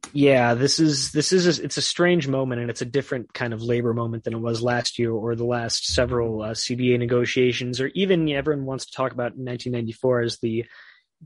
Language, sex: English, male